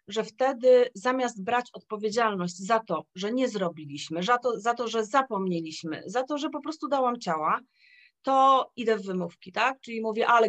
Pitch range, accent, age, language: 190-265 Hz, native, 30-49, Polish